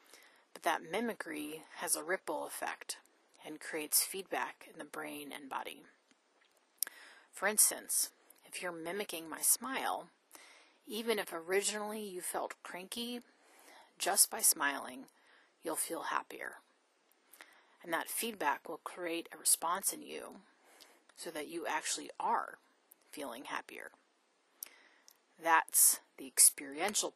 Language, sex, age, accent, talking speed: English, female, 30-49, American, 115 wpm